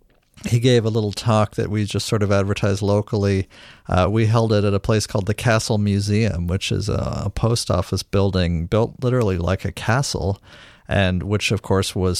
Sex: male